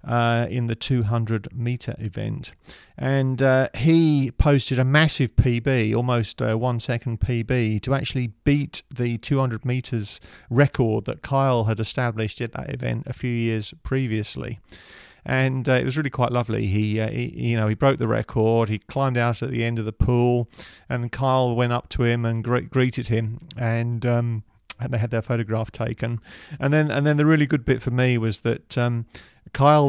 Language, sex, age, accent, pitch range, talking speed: English, male, 40-59, British, 110-130 Hz, 180 wpm